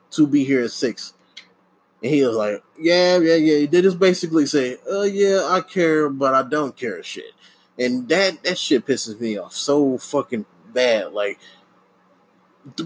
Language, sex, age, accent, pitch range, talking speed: English, male, 20-39, American, 125-195 Hz, 175 wpm